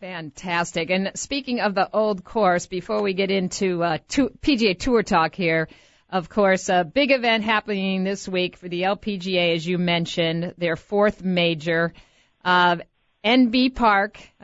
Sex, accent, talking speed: female, American, 150 wpm